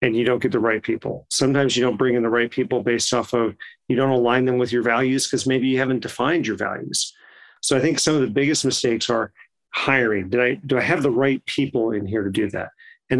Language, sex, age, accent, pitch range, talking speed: English, male, 40-59, American, 115-135 Hz, 255 wpm